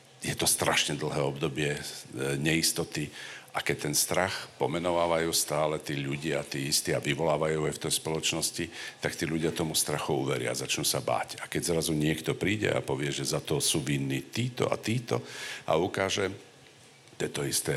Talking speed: 180 wpm